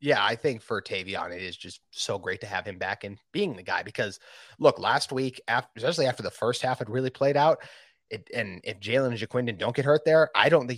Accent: American